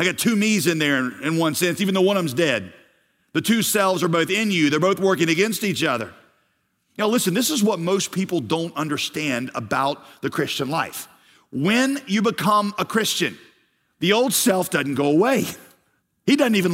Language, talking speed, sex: English, 195 wpm, male